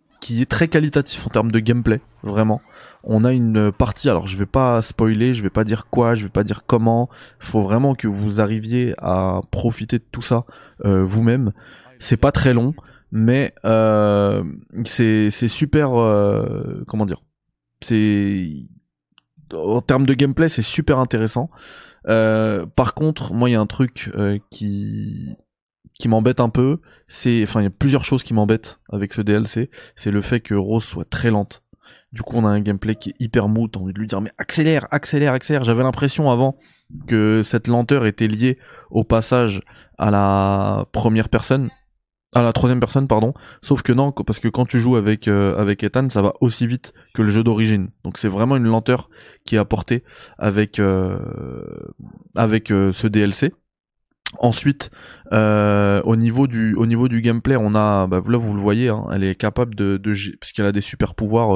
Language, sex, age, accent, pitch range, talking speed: French, male, 20-39, French, 105-125 Hz, 190 wpm